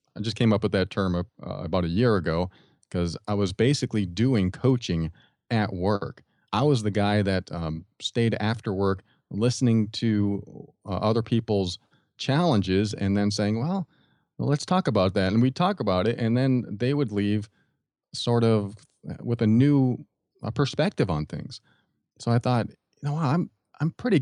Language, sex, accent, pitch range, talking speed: English, male, American, 100-125 Hz, 180 wpm